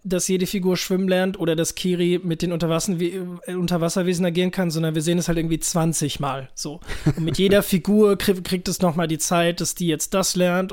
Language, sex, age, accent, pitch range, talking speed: German, male, 20-39, German, 165-190 Hz, 205 wpm